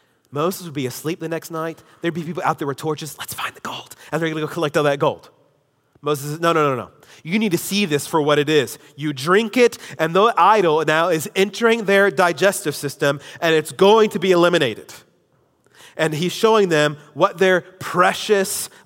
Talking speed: 215 wpm